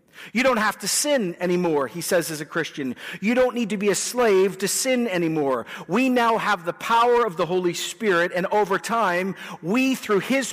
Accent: American